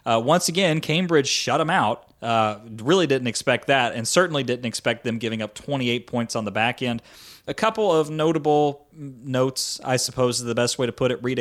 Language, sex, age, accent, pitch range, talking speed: English, male, 30-49, American, 115-135 Hz, 210 wpm